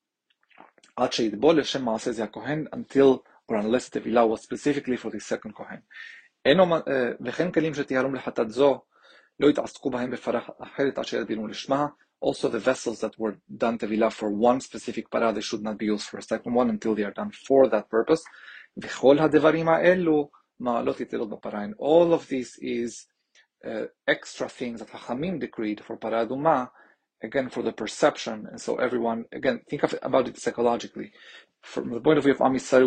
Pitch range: 110-135 Hz